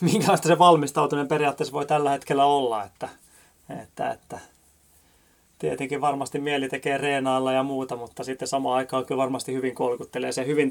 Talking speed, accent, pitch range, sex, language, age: 155 wpm, native, 120-140 Hz, male, Finnish, 30-49